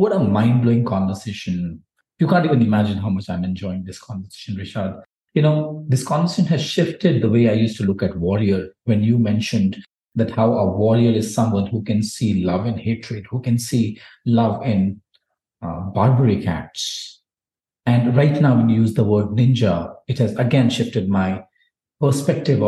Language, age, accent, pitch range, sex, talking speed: Hindi, 50-69, native, 105-140 Hz, male, 175 wpm